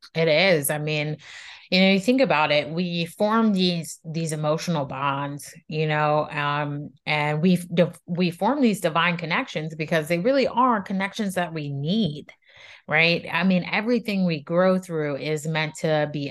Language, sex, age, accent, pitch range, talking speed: English, female, 30-49, American, 150-180 Hz, 170 wpm